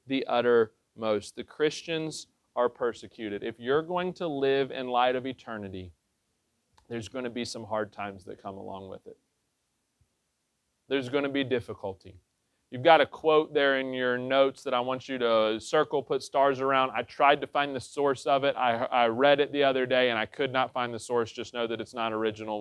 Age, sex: 30-49, male